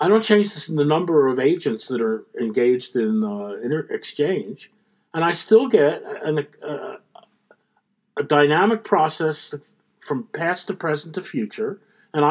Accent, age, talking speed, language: American, 50-69, 155 wpm, English